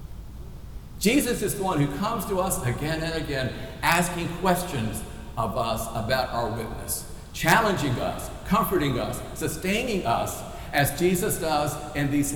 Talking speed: 140 wpm